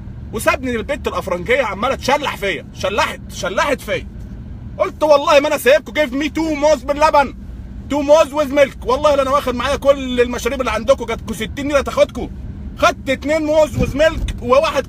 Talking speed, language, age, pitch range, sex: 170 wpm, Arabic, 30-49, 235-290 Hz, male